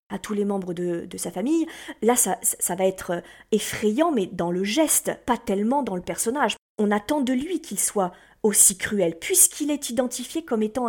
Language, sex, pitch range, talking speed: French, female, 200-260 Hz, 200 wpm